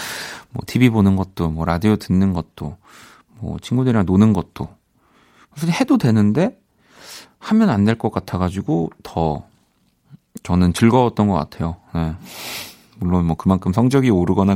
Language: Korean